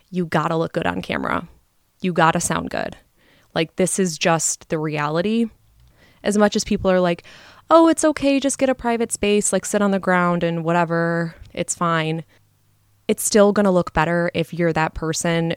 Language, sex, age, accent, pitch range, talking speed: English, female, 20-39, American, 160-185 Hz, 195 wpm